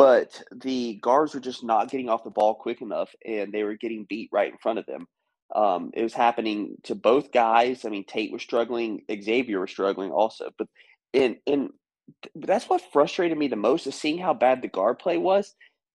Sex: male